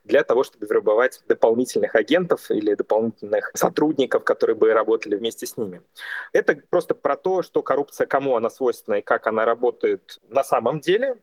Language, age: Russian, 30-49